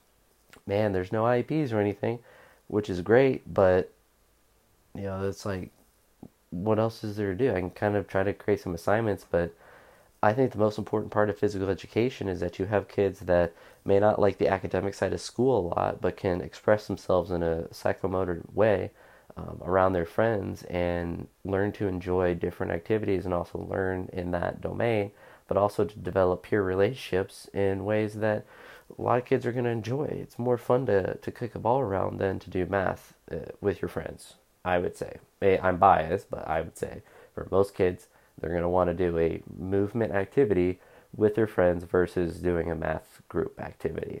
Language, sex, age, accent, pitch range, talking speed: English, male, 30-49, American, 90-110 Hz, 195 wpm